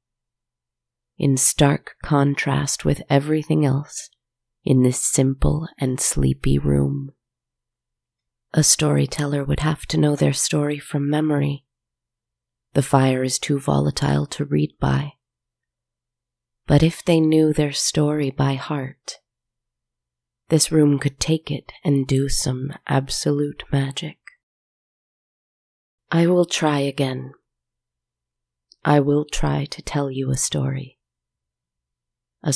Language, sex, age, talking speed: English, female, 30-49, 110 wpm